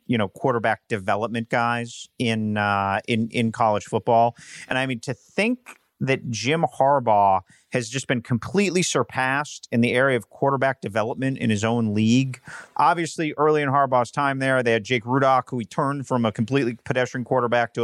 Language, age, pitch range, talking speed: English, 40-59, 115-145 Hz, 180 wpm